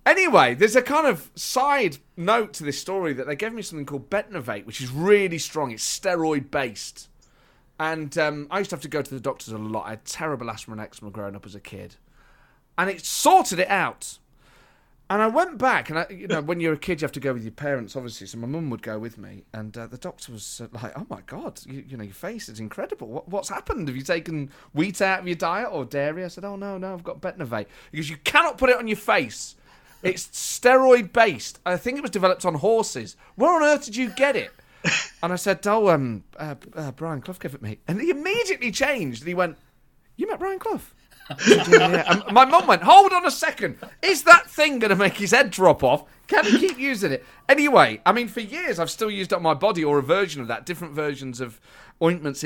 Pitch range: 135-215 Hz